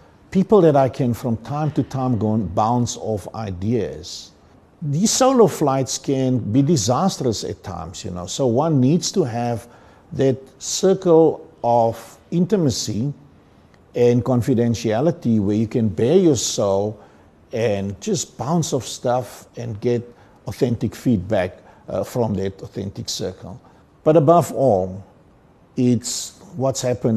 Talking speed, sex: 130 wpm, male